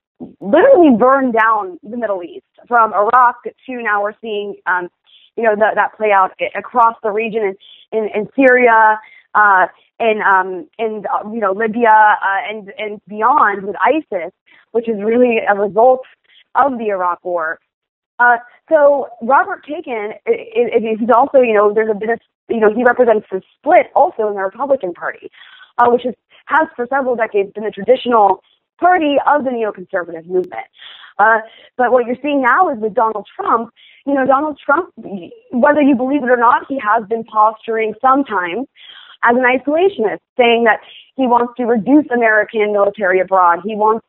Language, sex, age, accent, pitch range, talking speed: English, female, 20-39, American, 210-255 Hz, 175 wpm